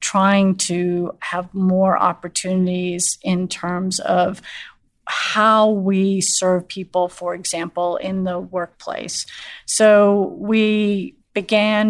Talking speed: 100 wpm